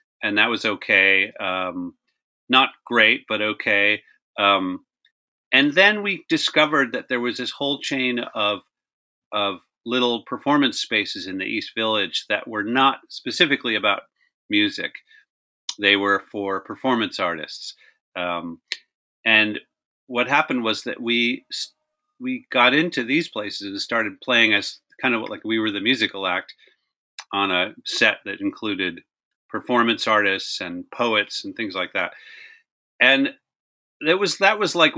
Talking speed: 145 wpm